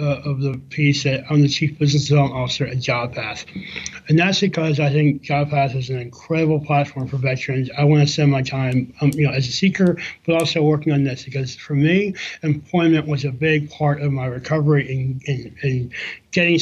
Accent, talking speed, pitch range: American, 200 wpm, 135-155 Hz